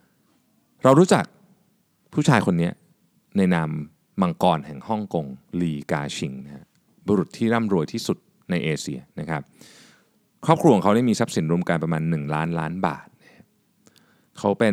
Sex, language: male, Thai